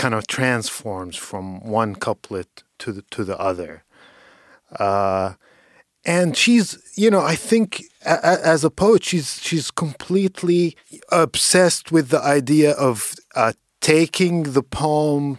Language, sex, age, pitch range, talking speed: English, male, 50-69, 120-165 Hz, 135 wpm